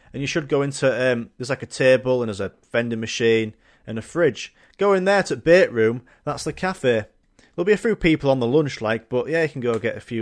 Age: 30-49